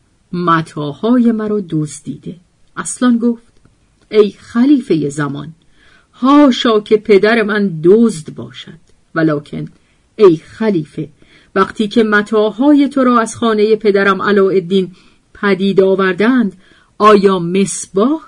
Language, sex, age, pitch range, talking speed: Persian, female, 40-59, 165-230 Hz, 105 wpm